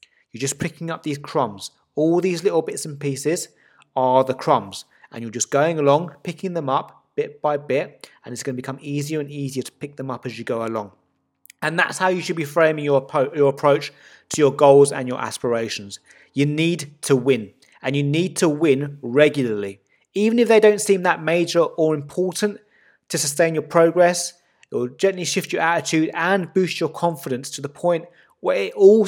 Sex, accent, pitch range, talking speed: male, British, 130-170 Hz, 200 wpm